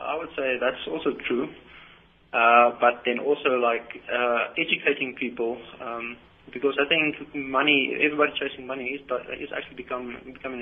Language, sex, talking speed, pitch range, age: English, male, 160 wpm, 120-145 Hz, 20-39